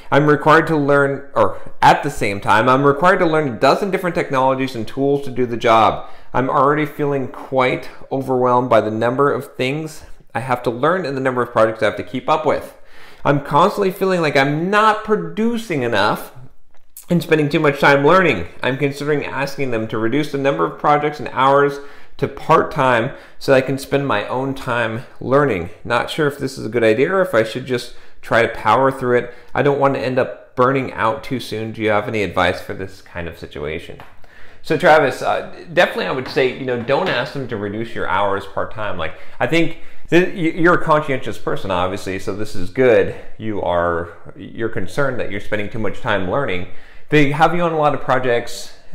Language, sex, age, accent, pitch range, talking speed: English, male, 40-59, American, 110-150 Hz, 215 wpm